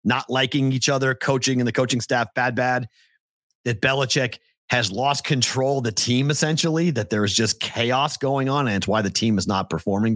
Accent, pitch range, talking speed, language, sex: American, 105-135 Hz, 205 wpm, English, male